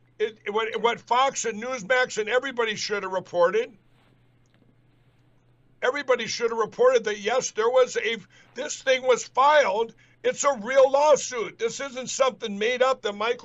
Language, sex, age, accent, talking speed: English, male, 60-79, American, 155 wpm